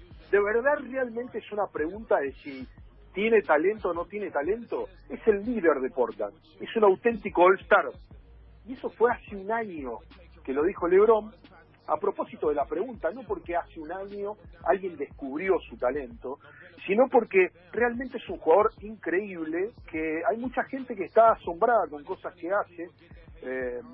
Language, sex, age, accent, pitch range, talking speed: Spanish, male, 40-59, Argentinian, 155-230 Hz, 165 wpm